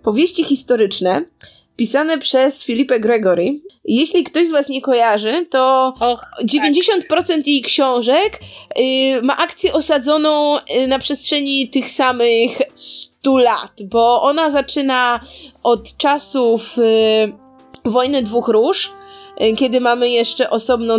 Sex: female